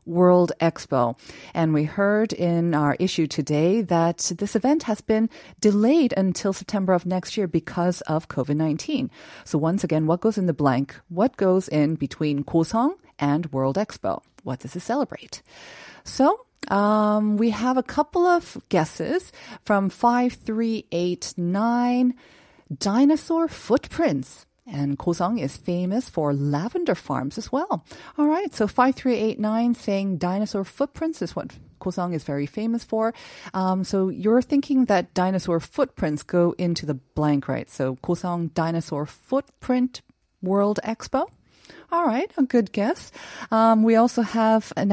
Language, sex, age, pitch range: Korean, female, 40-59, 160-235 Hz